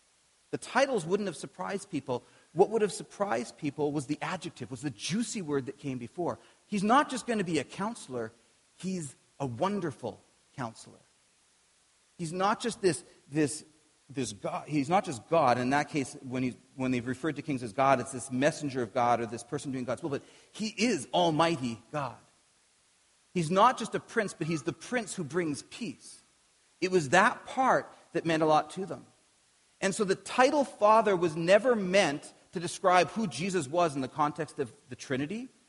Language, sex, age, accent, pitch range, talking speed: English, male, 40-59, American, 135-190 Hz, 190 wpm